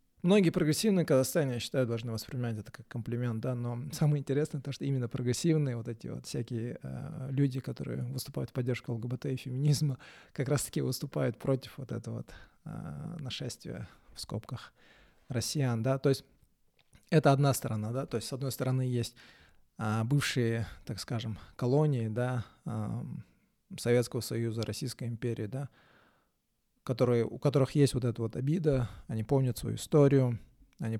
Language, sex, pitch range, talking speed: Russian, male, 115-140 Hz, 155 wpm